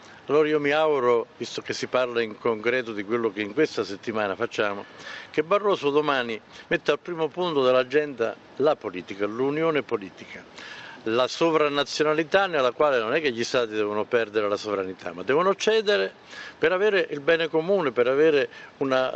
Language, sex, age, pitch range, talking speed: Italian, male, 50-69, 110-155 Hz, 165 wpm